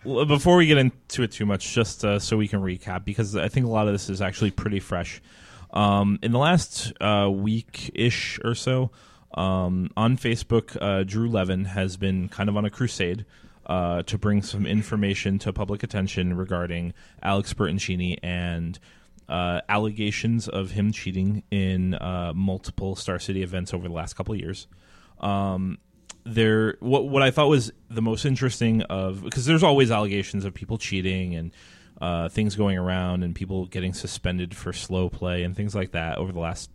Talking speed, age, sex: 180 wpm, 20-39, male